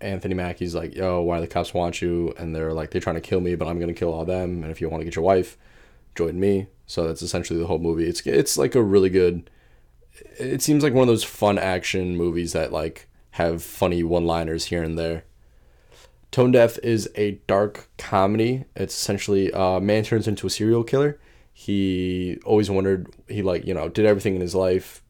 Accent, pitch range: American, 85-95 Hz